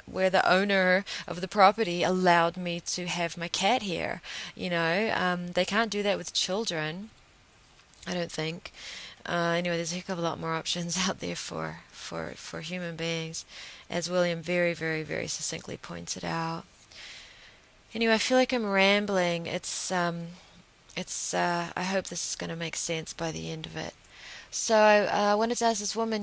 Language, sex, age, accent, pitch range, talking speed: English, female, 20-39, Australian, 170-200 Hz, 185 wpm